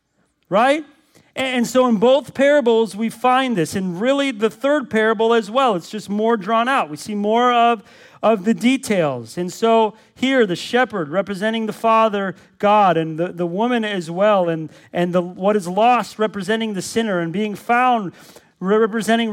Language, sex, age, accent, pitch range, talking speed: English, male, 40-59, American, 185-230 Hz, 175 wpm